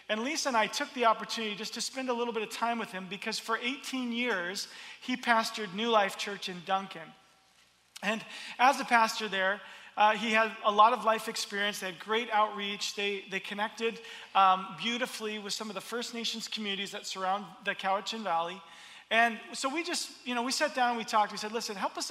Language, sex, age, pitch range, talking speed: Dutch, male, 40-59, 195-235 Hz, 210 wpm